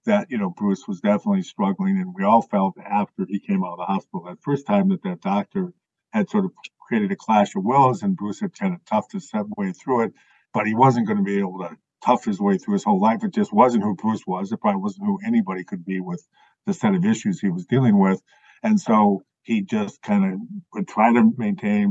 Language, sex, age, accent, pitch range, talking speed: English, male, 50-69, American, 140-205 Hz, 245 wpm